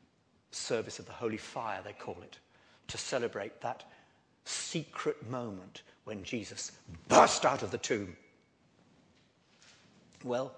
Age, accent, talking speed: 50-69, British, 120 wpm